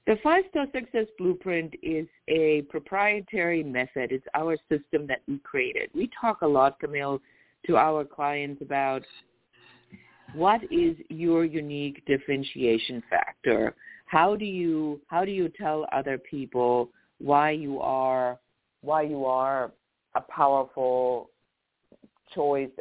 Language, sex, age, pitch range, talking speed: English, female, 50-69, 130-165 Hz, 125 wpm